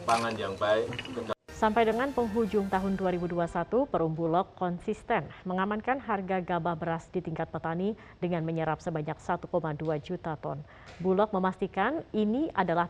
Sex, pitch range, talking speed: female, 165-210 Hz, 115 wpm